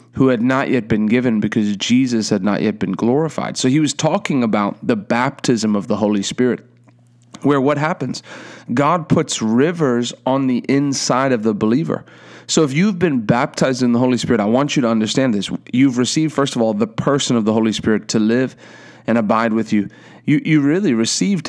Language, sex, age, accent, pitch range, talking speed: English, male, 30-49, American, 110-135 Hz, 200 wpm